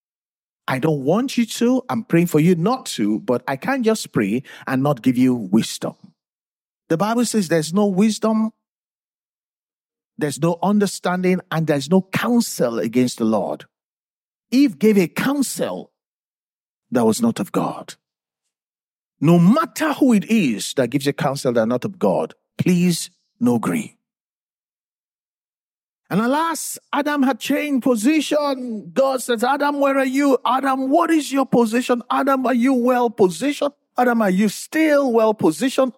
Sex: male